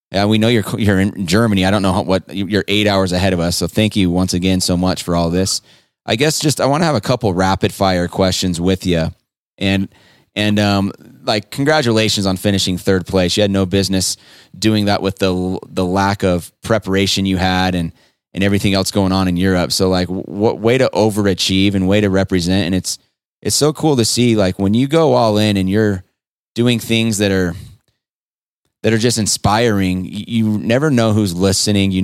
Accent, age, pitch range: American, 20-39, 95-110 Hz